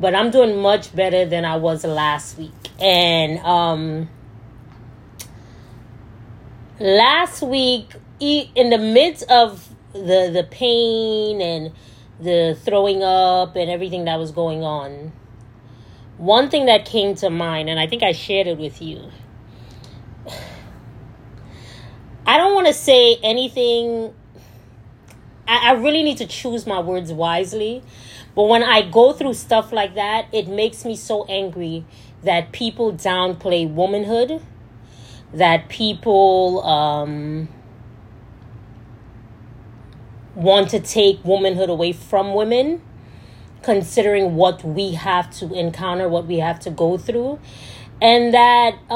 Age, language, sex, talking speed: 20-39, English, female, 125 wpm